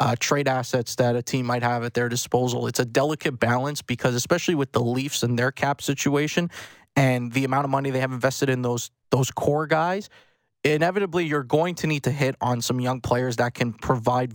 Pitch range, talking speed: 130-155 Hz, 215 wpm